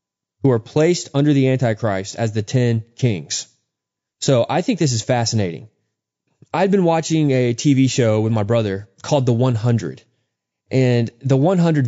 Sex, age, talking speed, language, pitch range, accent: male, 20-39, 155 wpm, English, 115-140 Hz, American